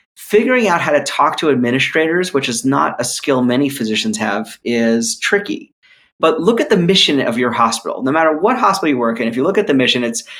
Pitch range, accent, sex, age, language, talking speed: 125-185 Hz, American, male, 30-49, English, 225 wpm